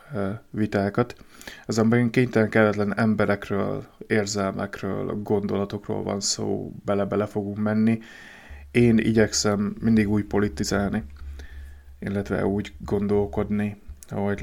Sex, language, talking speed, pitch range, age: male, Hungarian, 90 wpm, 95-105 Hz, 30-49